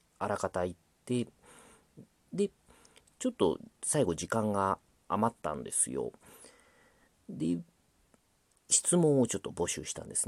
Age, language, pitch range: 40-59, Japanese, 85-120 Hz